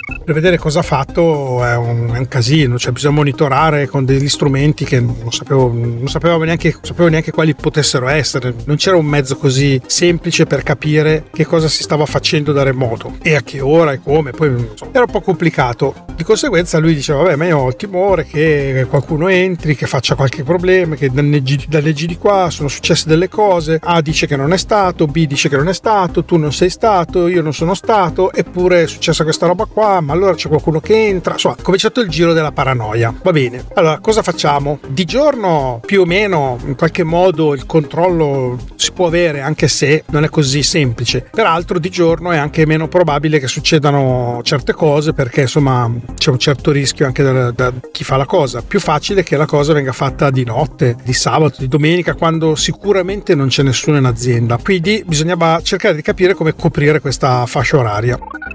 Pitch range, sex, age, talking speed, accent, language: 140-175 Hz, male, 30-49, 200 wpm, native, Italian